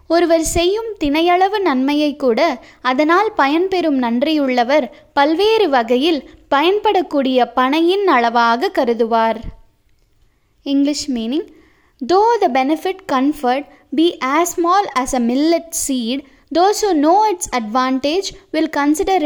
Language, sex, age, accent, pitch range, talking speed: Tamil, female, 20-39, native, 255-345 Hz, 105 wpm